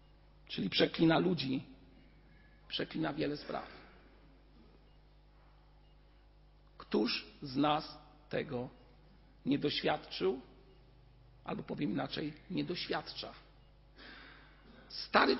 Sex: male